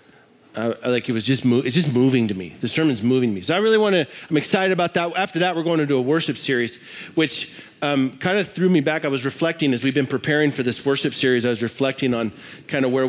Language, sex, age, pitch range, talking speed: English, male, 40-59, 110-140 Hz, 265 wpm